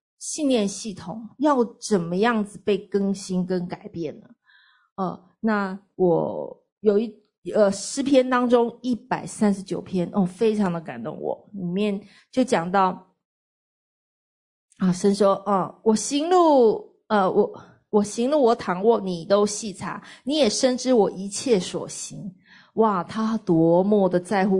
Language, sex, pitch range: Chinese, female, 190-230 Hz